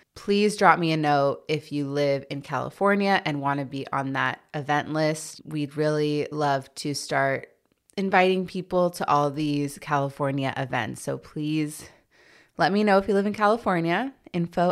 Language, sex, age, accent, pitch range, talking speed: English, female, 20-39, American, 145-175 Hz, 165 wpm